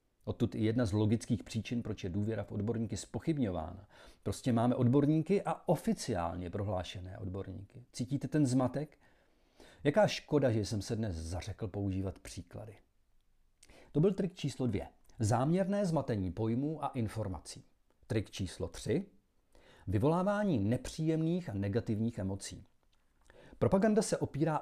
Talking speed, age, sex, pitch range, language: 125 wpm, 40-59, male, 100-145 Hz, Czech